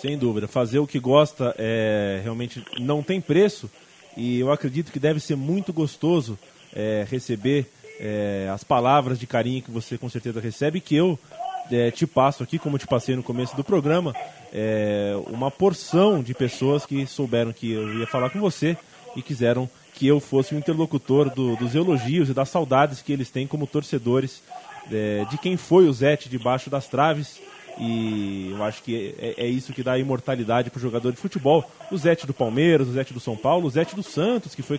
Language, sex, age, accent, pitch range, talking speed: Portuguese, male, 20-39, Brazilian, 120-155 Hz, 185 wpm